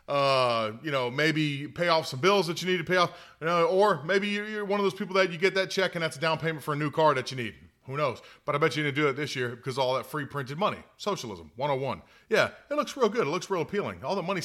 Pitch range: 125-170 Hz